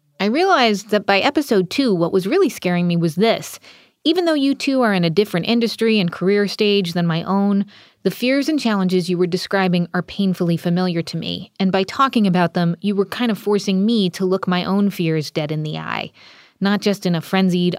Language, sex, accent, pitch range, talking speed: English, female, American, 175-205 Hz, 220 wpm